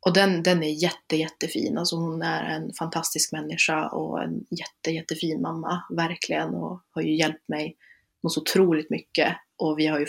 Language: Swedish